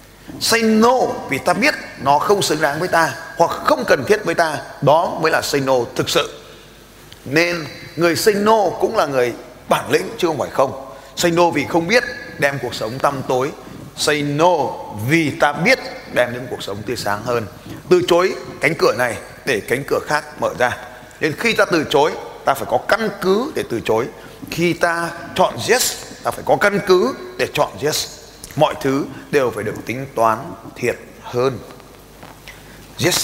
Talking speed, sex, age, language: 200 wpm, male, 20-39, Vietnamese